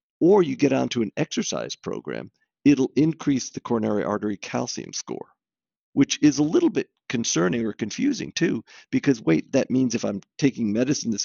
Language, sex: English, male